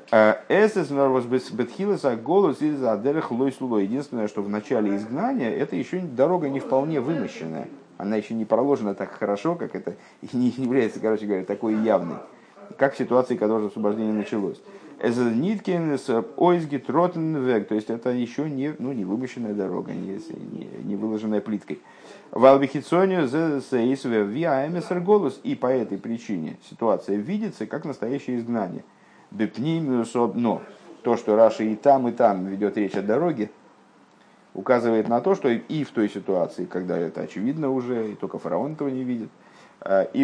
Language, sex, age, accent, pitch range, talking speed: Russian, male, 50-69, native, 105-145 Hz, 125 wpm